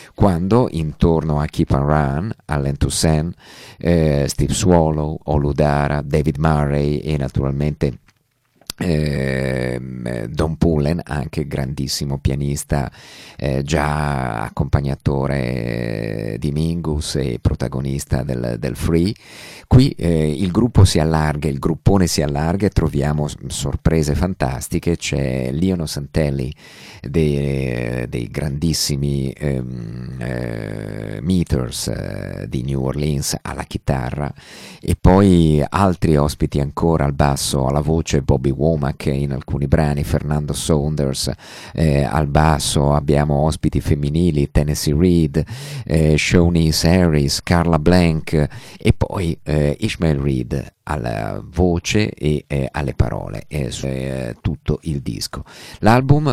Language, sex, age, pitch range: Italian, male, 50-69, 70-80 Hz